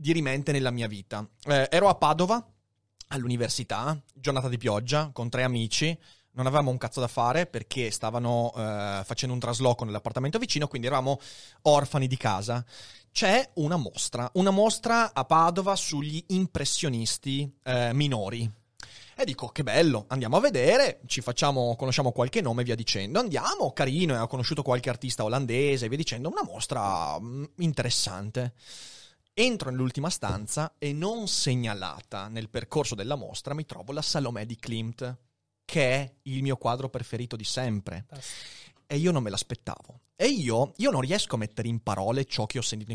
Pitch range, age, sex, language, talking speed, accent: 115-150 Hz, 30-49, male, Italian, 160 wpm, native